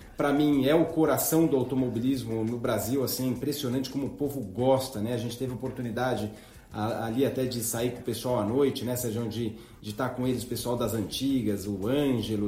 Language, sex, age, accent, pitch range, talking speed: Portuguese, male, 40-59, Brazilian, 125-160 Hz, 200 wpm